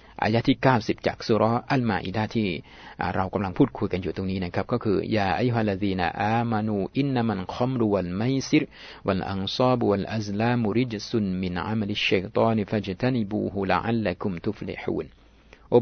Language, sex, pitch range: Thai, male, 95-120 Hz